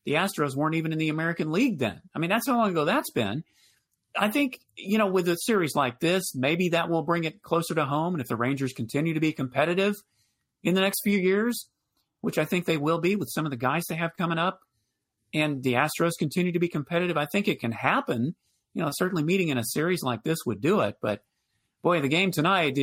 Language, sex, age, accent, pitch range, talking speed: English, male, 40-59, American, 120-180 Hz, 240 wpm